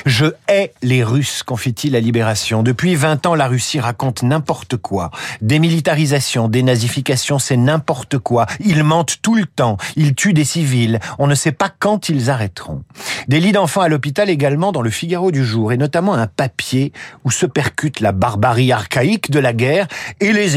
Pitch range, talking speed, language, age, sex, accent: 125-175 Hz, 190 wpm, French, 50-69, male, French